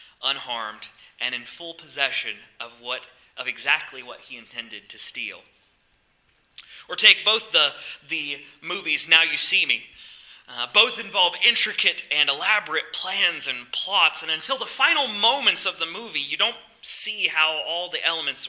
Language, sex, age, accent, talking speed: English, male, 30-49, American, 155 wpm